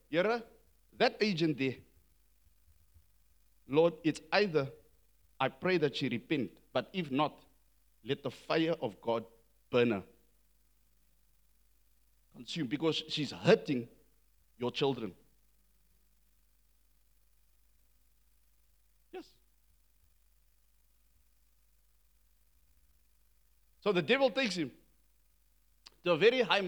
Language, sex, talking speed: English, male, 85 wpm